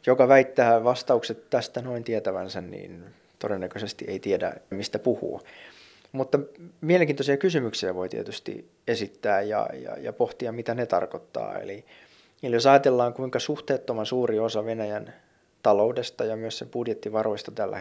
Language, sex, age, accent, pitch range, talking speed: Finnish, male, 20-39, native, 110-130 Hz, 135 wpm